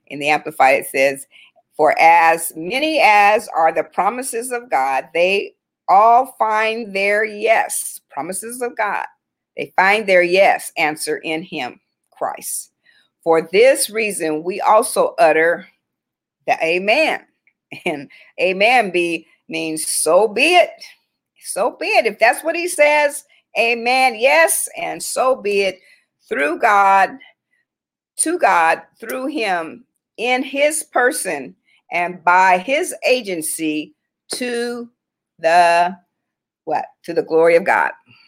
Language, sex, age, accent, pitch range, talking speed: English, female, 50-69, American, 170-270 Hz, 125 wpm